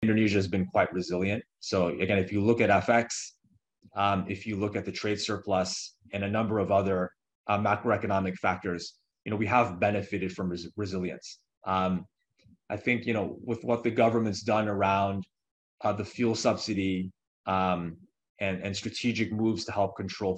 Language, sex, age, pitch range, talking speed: English, male, 30-49, 95-110 Hz, 170 wpm